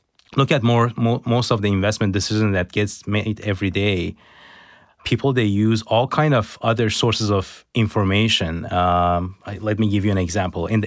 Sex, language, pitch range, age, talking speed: male, English, 95-115 Hz, 30-49, 175 wpm